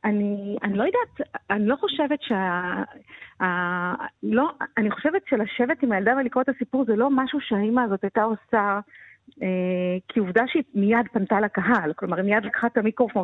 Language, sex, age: Hebrew, female, 40-59